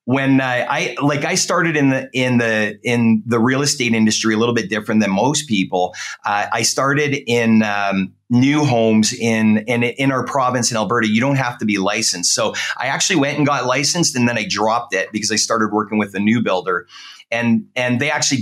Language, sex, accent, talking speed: English, male, American, 215 wpm